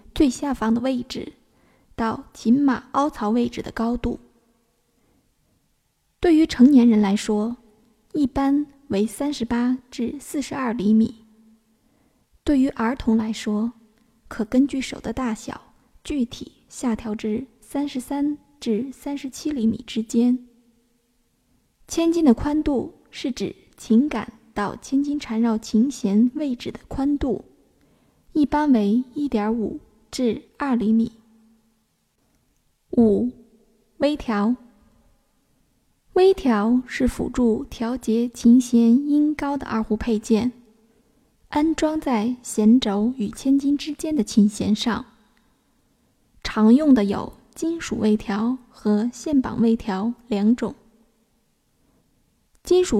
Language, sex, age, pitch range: Chinese, female, 20-39, 225-275 Hz